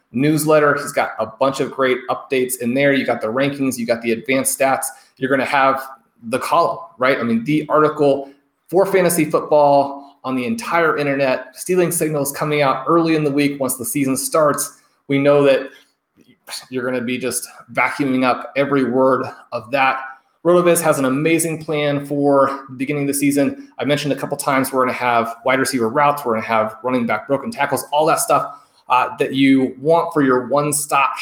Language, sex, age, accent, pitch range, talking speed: English, male, 30-49, American, 130-150 Hz, 200 wpm